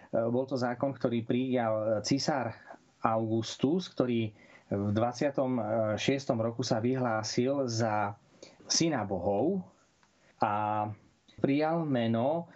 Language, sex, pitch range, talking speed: Slovak, male, 115-140 Hz, 90 wpm